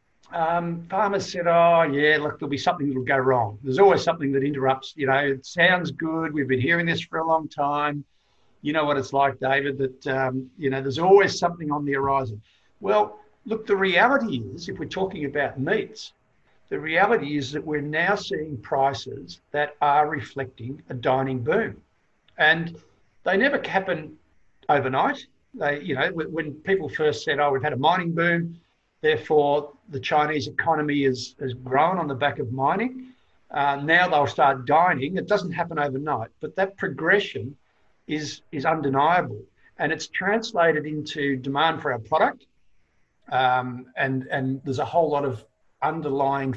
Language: English